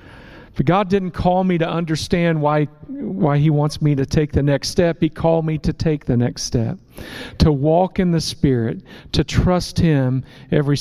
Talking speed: 190 wpm